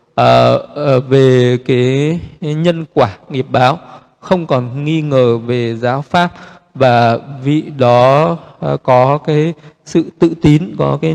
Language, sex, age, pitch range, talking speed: Vietnamese, male, 20-39, 125-155 Hz, 130 wpm